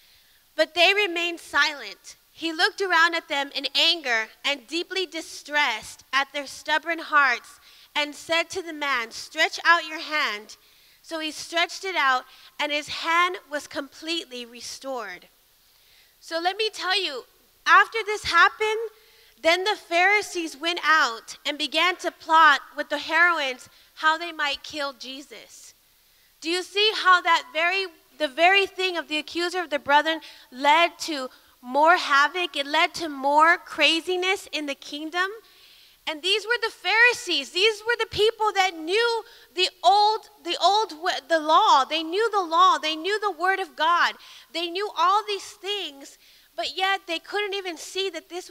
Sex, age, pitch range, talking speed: female, 30-49, 295-370 Hz, 160 wpm